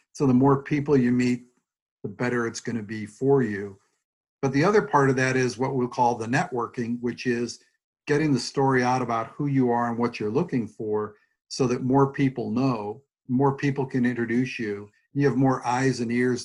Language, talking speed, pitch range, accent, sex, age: English, 205 wpm, 120-140 Hz, American, male, 50-69